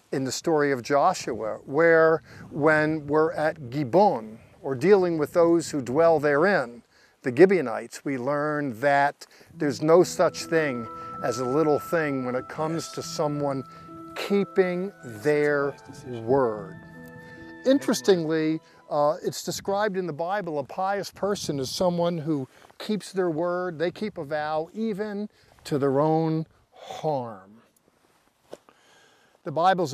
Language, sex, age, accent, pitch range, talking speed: English, male, 50-69, American, 140-170 Hz, 130 wpm